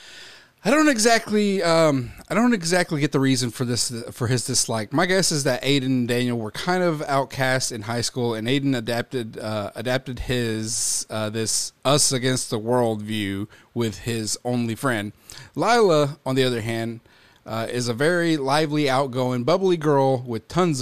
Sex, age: male, 30-49